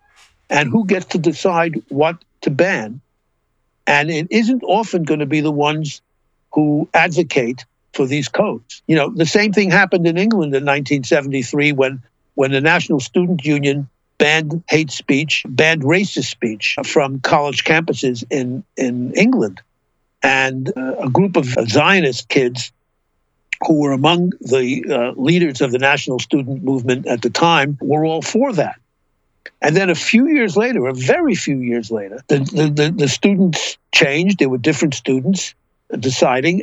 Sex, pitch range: male, 130-170 Hz